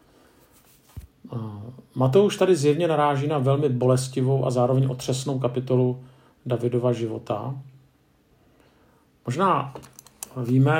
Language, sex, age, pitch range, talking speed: Czech, male, 50-69, 125-145 Hz, 90 wpm